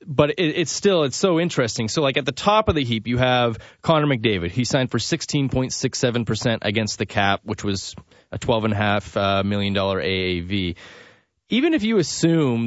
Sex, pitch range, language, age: male, 105-130 Hz, English, 30-49